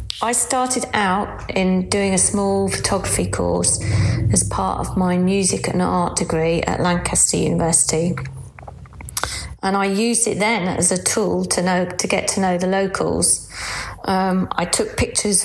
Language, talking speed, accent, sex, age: English, 155 wpm, British, female, 30-49